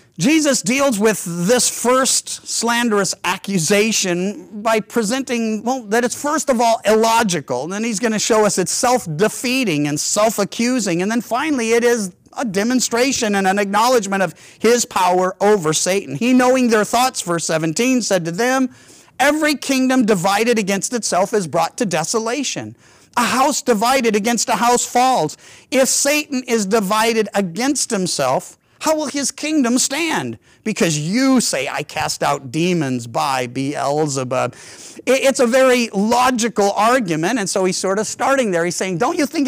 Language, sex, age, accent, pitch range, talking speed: English, male, 50-69, American, 185-250 Hz, 155 wpm